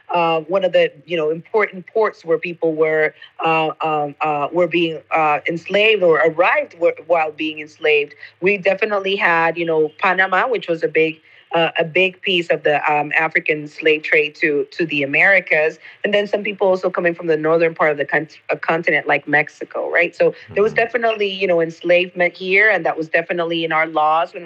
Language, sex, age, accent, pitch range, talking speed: English, female, 40-59, American, 160-215 Hz, 195 wpm